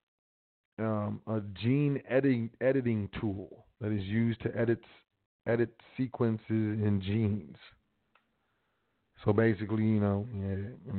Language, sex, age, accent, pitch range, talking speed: English, male, 30-49, American, 105-125 Hz, 110 wpm